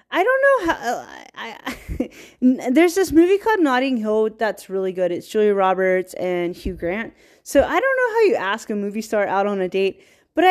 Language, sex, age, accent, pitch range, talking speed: English, female, 20-39, American, 195-280 Hz, 210 wpm